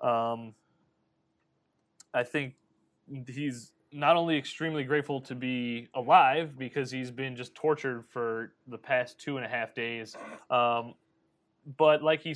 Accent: American